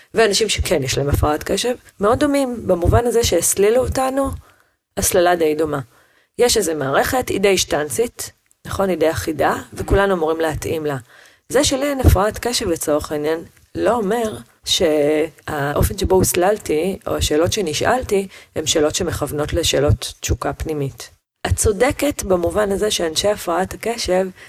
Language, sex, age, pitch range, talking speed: Hebrew, female, 30-49, 155-215 Hz, 140 wpm